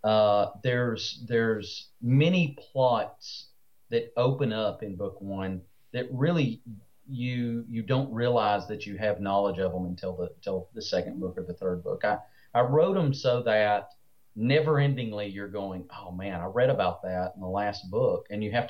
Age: 40-59